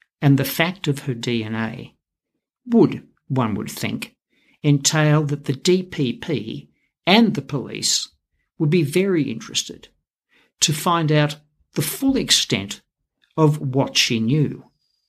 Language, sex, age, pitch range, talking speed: English, male, 60-79, 125-160 Hz, 125 wpm